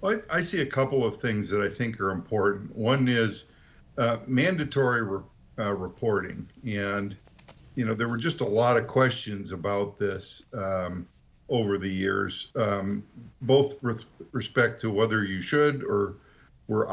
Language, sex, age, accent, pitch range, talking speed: English, male, 50-69, American, 100-120 Hz, 155 wpm